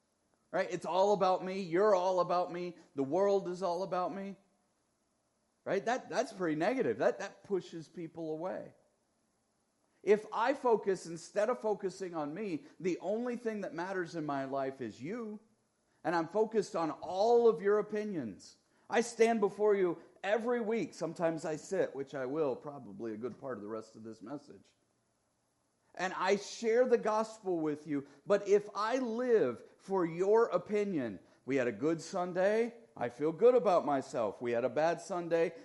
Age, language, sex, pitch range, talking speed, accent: 40-59, English, male, 160-225 Hz, 170 wpm, American